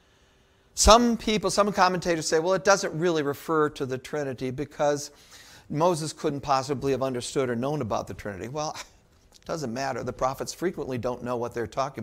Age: 50-69